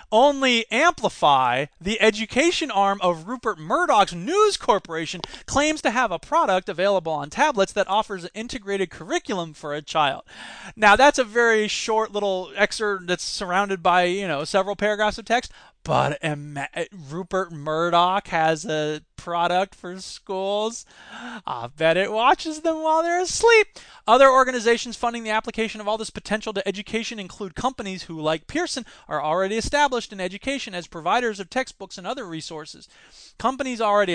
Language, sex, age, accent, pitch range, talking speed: English, male, 20-39, American, 180-235 Hz, 155 wpm